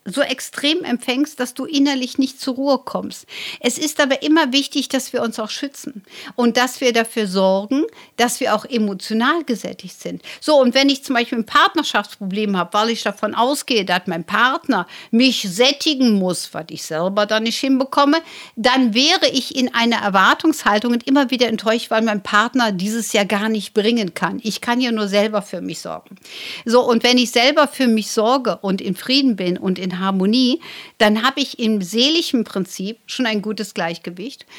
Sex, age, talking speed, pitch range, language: female, 60-79, 185 wpm, 205-265 Hz, German